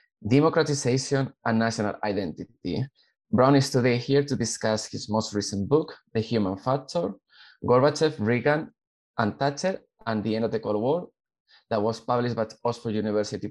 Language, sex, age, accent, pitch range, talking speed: English, male, 20-39, Spanish, 110-135 Hz, 150 wpm